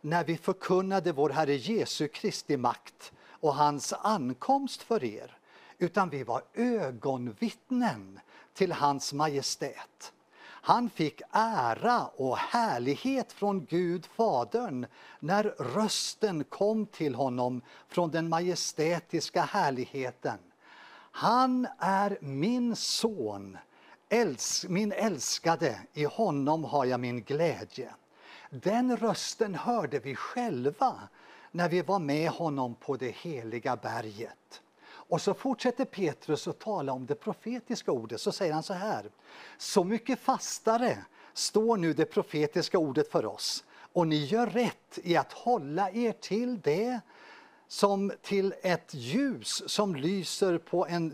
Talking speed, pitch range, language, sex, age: 125 wpm, 150-220 Hz, English, male, 60-79